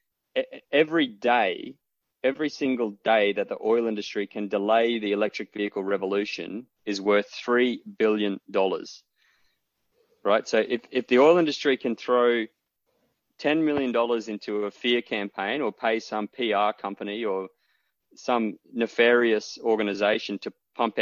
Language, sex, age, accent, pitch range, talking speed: English, male, 20-39, Australian, 100-120 Hz, 130 wpm